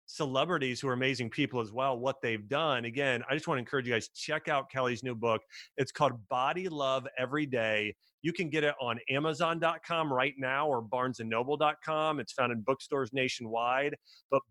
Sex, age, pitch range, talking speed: male, 30-49, 120-140 Hz, 185 wpm